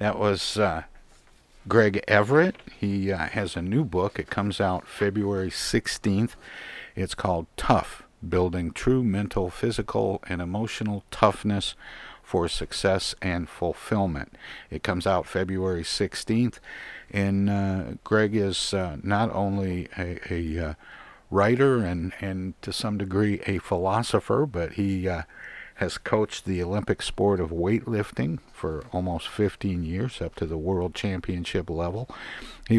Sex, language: male, English